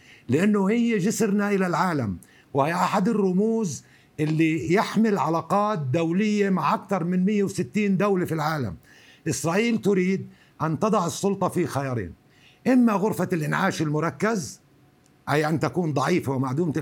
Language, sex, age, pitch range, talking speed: Arabic, male, 60-79, 145-205 Hz, 125 wpm